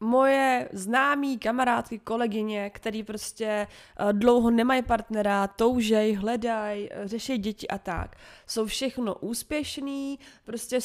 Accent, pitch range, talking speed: native, 205-245 Hz, 105 wpm